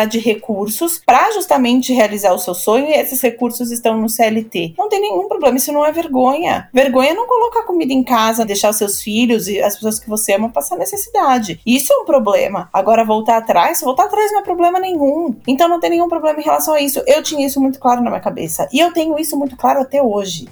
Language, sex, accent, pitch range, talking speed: Portuguese, female, Brazilian, 220-285 Hz, 230 wpm